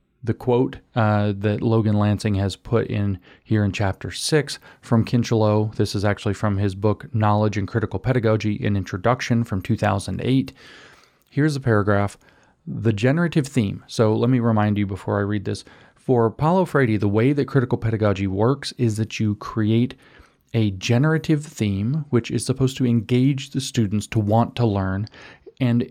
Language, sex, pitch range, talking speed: English, male, 105-125 Hz, 165 wpm